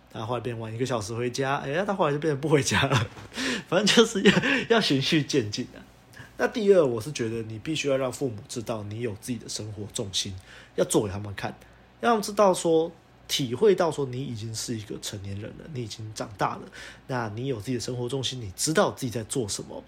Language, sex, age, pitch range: Chinese, male, 20-39, 115-140 Hz